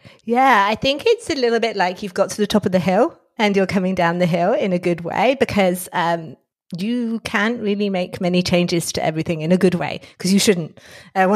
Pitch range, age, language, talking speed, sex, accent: 175-205 Hz, 30-49, English, 235 wpm, female, British